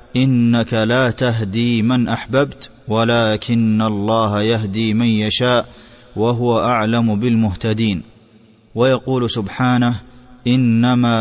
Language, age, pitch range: Arabic, 30-49, 110-125 Hz